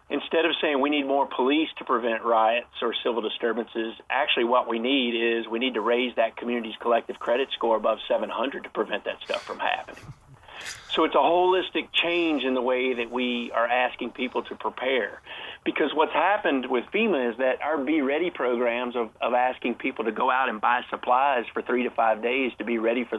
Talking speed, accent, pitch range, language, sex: 205 wpm, American, 115-130 Hz, English, male